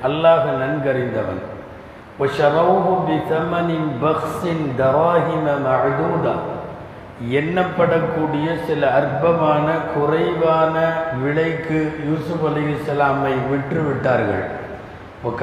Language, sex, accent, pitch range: Tamil, male, native, 135-160 Hz